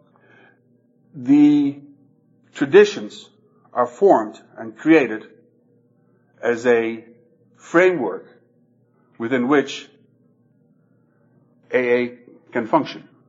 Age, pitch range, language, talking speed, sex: 60-79, 120-170 Hz, English, 65 wpm, male